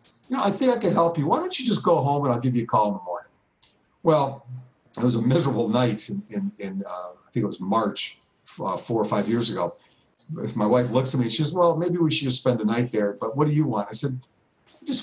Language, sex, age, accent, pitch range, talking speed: English, male, 50-69, American, 115-135 Hz, 280 wpm